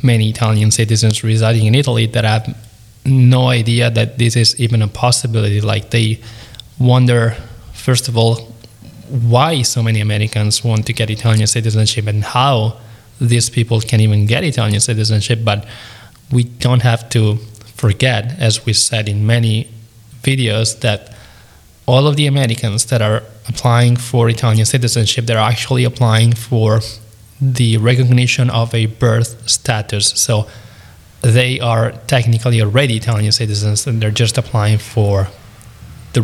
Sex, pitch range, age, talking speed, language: male, 110-120 Hz, 20-39, 140 wpm, English